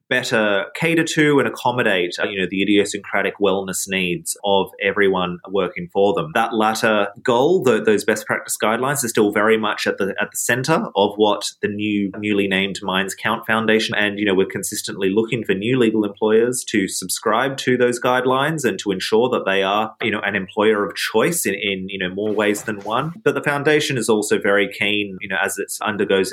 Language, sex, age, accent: English, male, 30-49, Australian